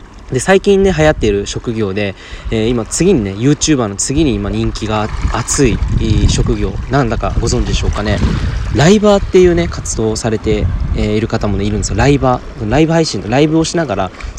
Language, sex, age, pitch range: Japanese, male, 20-39, 105-145 Hz